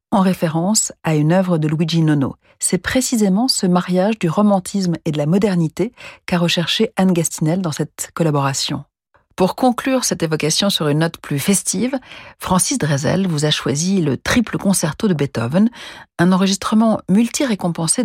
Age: 40-59